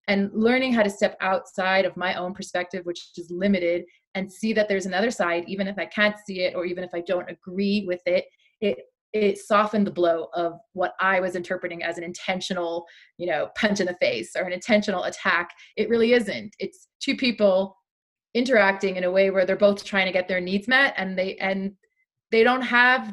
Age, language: 30-49, English